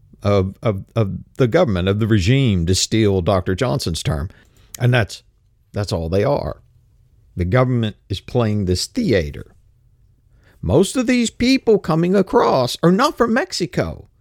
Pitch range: 105-160 Hz